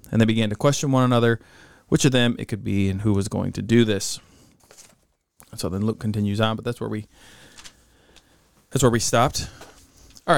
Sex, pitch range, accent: male, 105-125 Hz, American